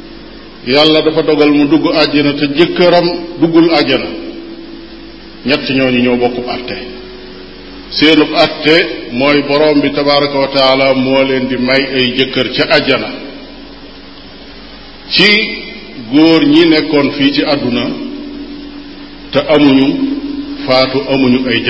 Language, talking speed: French, 55 wpm